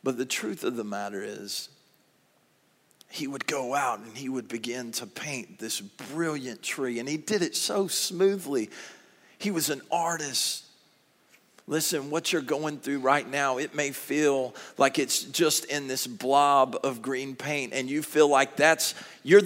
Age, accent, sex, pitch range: 40-59, American, male, 145-200 Hz